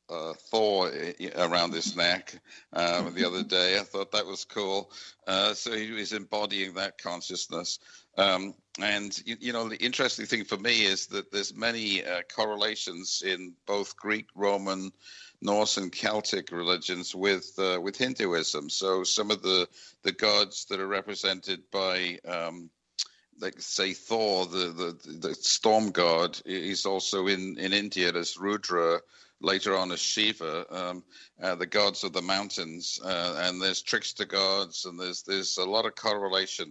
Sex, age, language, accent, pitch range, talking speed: male, 50-69, English, British, 90-105 Hz, 160 wpm